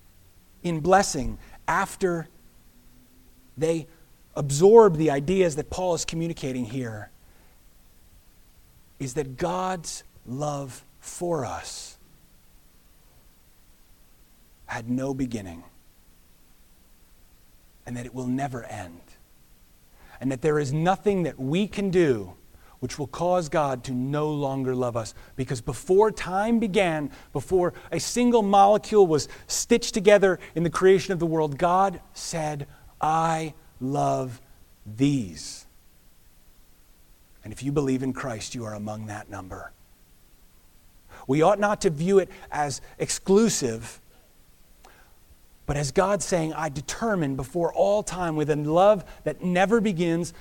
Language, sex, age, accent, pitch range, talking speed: English, male, 40-59, American, 105-170 Hz, 120 wpm